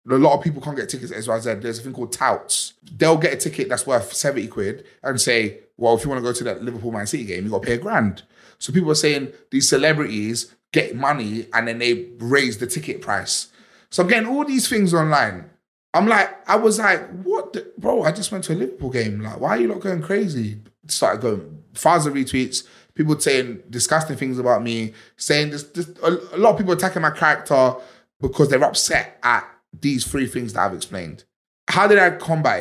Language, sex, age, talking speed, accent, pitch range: English, male, 20-39, 225 wpm, British, 120-170 Hz